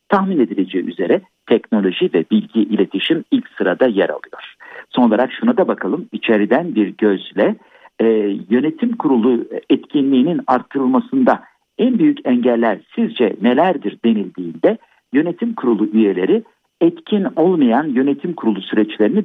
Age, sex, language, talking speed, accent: 60-79, male, Turkish, 120 wpm, native